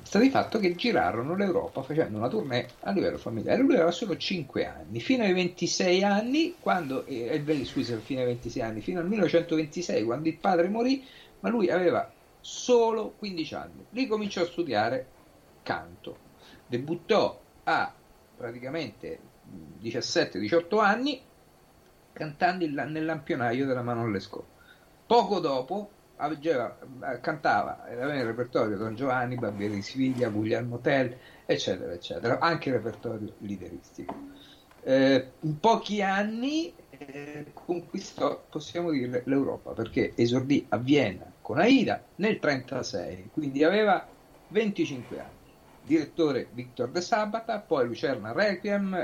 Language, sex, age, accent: Italian, male, 50-69, native